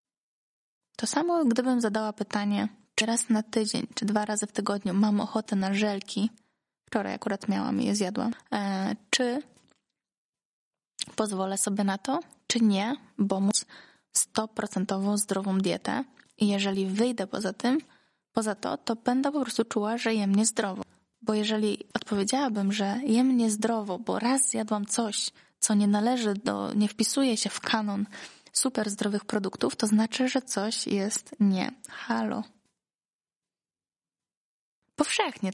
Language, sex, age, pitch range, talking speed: Polish, female, 20-39, 205-245 Hz, 140 wpm